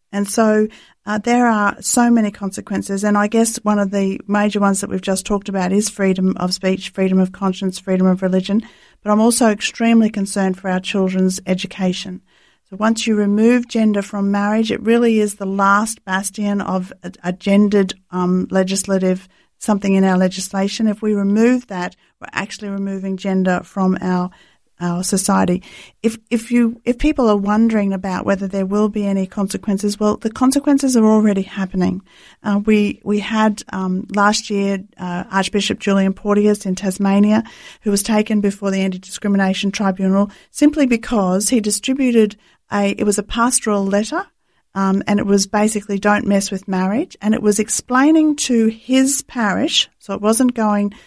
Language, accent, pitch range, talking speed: English, Australian, 195-220 Hz, 170 wpm